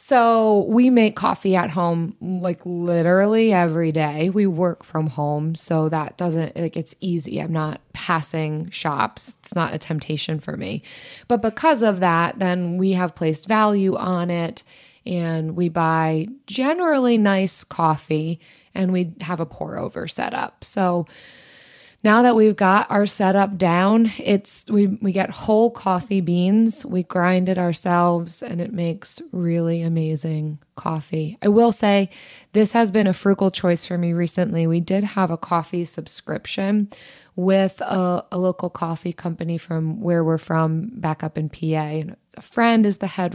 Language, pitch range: English, 165-210 Hz